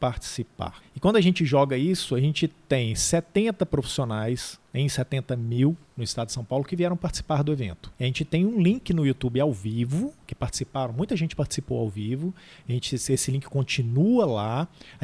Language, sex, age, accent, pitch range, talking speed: Portuguese, male, 40-59, Brazilian, 130-185 Hz, 190 wpm